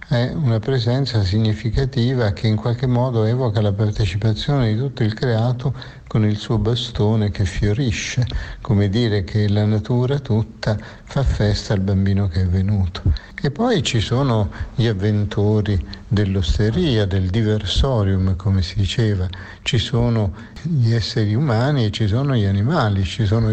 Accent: native